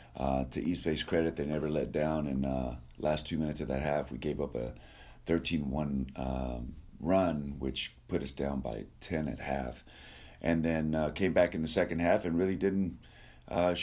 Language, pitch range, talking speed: English, 70-90 Hz, 190 wpm